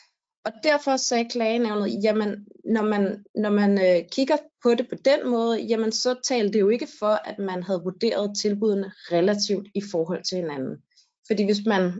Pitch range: 180-235 Hz